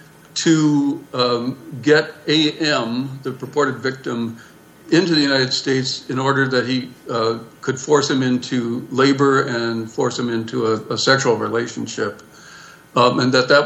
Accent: American